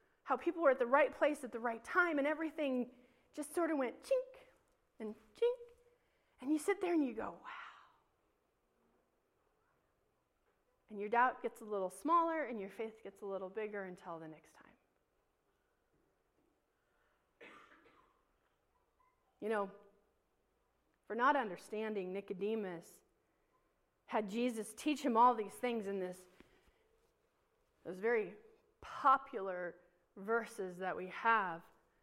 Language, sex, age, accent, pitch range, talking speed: English, female, 30-49, American, 205-295 Hz, 125 wpm